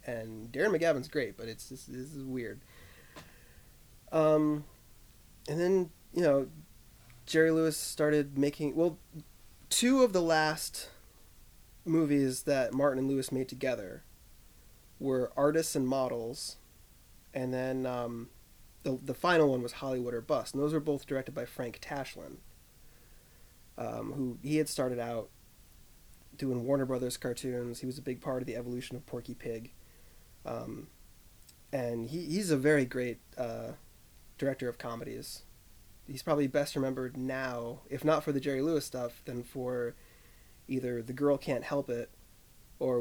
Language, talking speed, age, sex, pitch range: English, 150 wpm, 20-39, male, 120-145 Hz